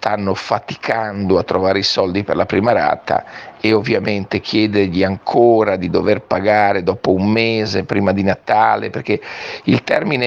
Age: 50-69